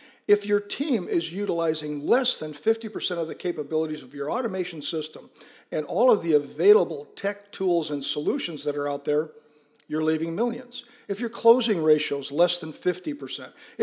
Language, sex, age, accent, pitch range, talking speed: English, male, 50-69, American, 155-225 Hz, 170 wpm